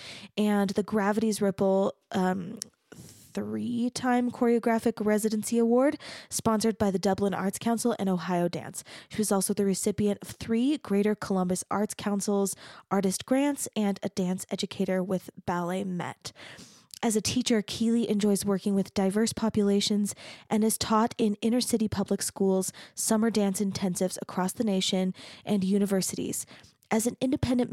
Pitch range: 190-225 Hz